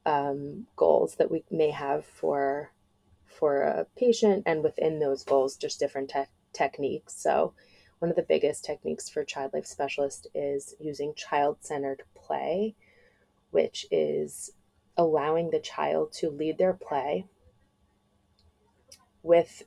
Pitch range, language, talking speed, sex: 140-175 Hz, English, 130 wpm, female